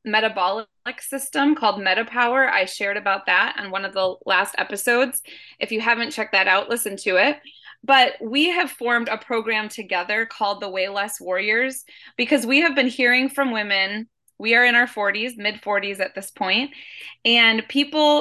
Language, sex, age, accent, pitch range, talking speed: English, female, 20-39, American, 205-265 Hz, 180 wpm